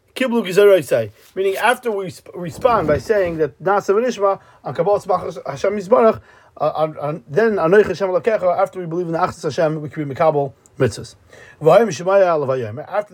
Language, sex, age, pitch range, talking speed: English, male, 40-59, 150-205 Hz, 105 wpm